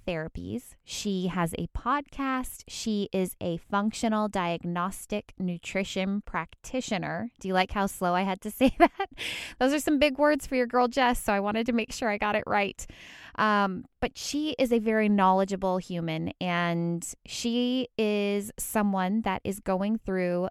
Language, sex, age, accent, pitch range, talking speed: English, female, 20-39, American, 170-220 Hz, 165 wpm